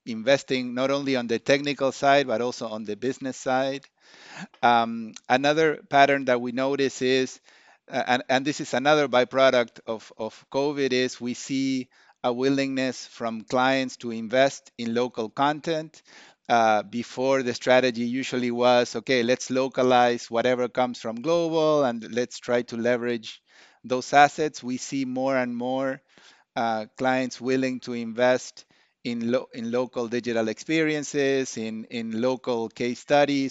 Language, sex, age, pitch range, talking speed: English, male, 50-69, 120-140 Hz, 145 wpm